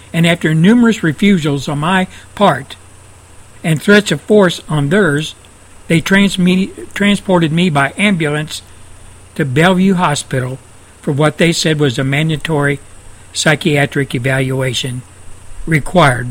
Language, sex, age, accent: Japanese, male, 60-79, American